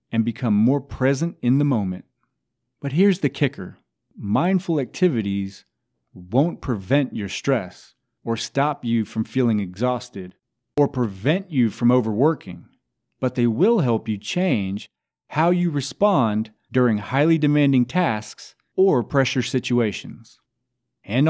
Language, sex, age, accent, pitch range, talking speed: English, male, 40-59, American, 110-145 Hz, 125 wpm